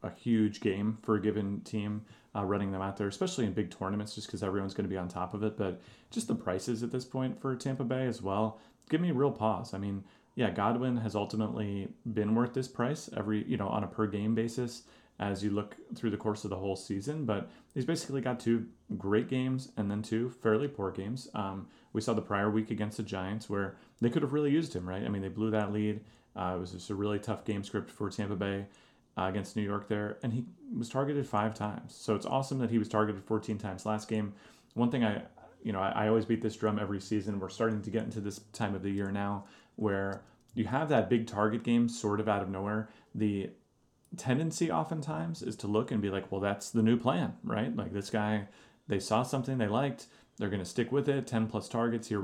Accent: American